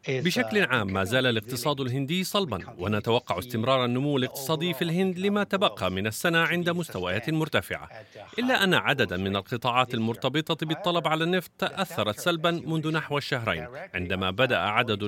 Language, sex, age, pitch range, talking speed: Arabic, male, 40-59, 120-170 Hz, 145 wpm